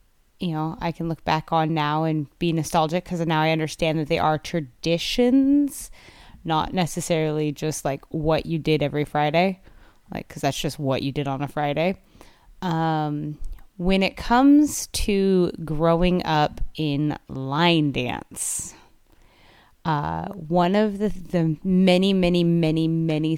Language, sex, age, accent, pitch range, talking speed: English, female, 20-39, American, 150-175 Hz, 145 wpm